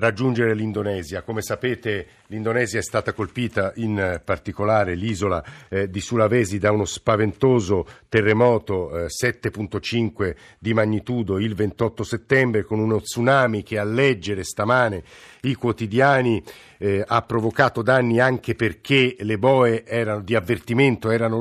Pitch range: 105-125 Hz